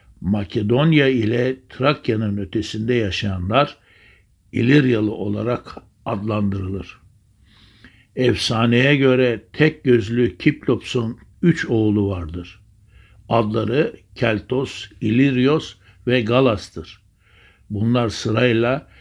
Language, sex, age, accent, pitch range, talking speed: Turkish, male, 60-79, native, 100-125 Hz, 75 wpm